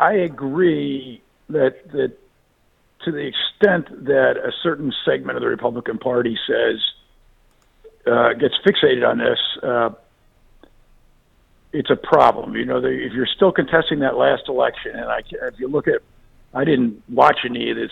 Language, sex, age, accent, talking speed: English, male, 50-69, American, 155 wpm